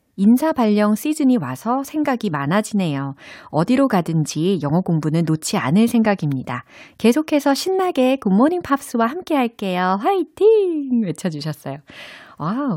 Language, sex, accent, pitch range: Korean, female, native, 155-240 Hz